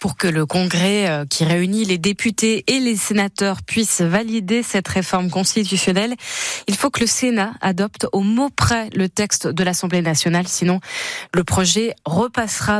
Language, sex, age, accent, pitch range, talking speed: French, female, 20-39, French, 190-235 Hz, 160 wpm